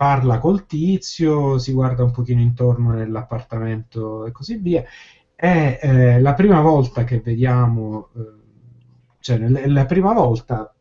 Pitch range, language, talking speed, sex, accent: 115-135 Hz, Italian, 140 wpm, male, native